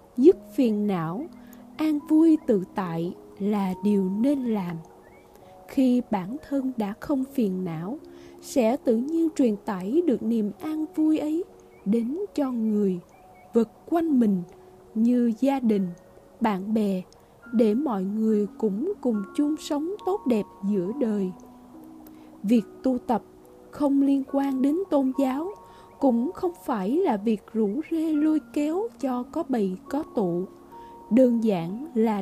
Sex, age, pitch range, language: female, 20-39, 205-285 Hz, Vietnamese